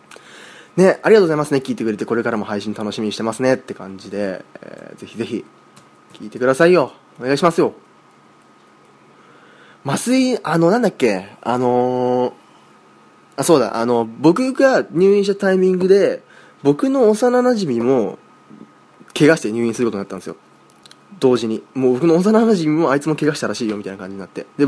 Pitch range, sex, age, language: 105-160 Hz, male, 20-39, Japanese